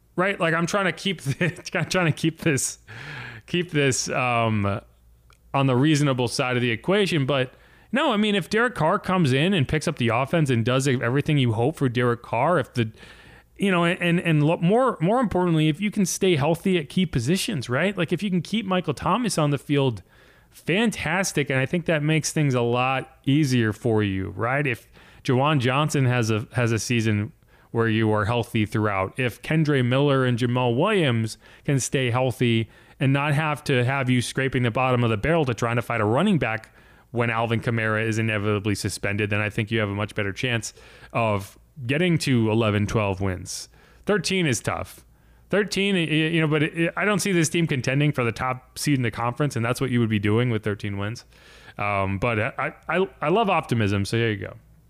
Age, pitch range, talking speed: 30-49, 115-165 Hz, 205 wpm